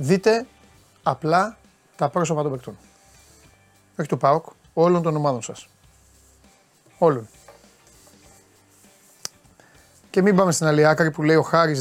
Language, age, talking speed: Greek, 30-49, 115 wpm